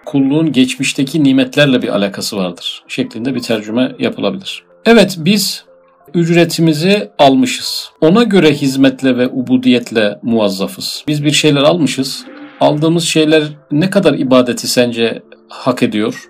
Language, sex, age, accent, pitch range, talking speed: Turkish, male, 50-69, native, 130-175 Hz, 120 wpm